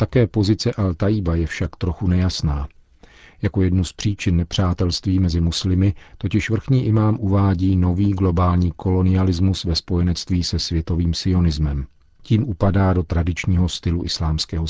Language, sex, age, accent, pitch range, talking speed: Czech, male, 40-59, native, 85-100 Hz, 130 wpm